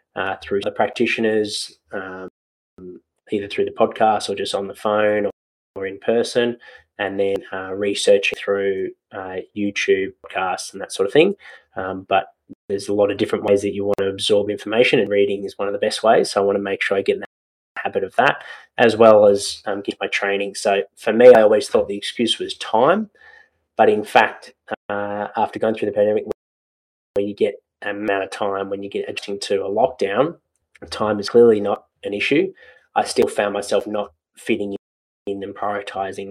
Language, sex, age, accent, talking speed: English, male, 20-39, Australian, 195 wpm